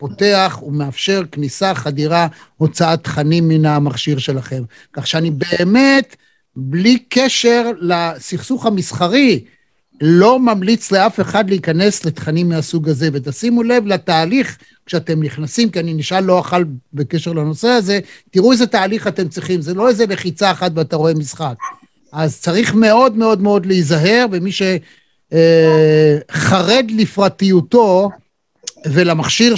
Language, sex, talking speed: Hebrew, male, 125 wpm